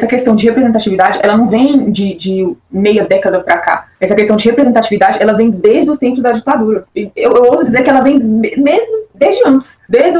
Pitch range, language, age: 210-270 Hz, Portuguese, 20-39